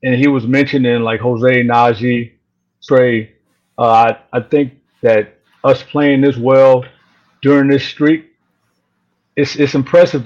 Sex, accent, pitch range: male, American, 115-135 Hz